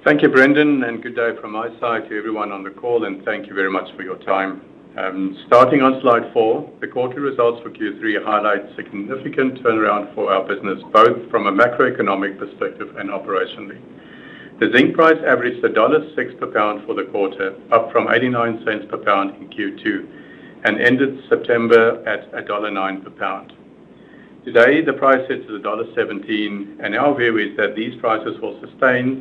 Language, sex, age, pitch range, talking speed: English, male, 60-79, 105-135 Hz, 170 wpm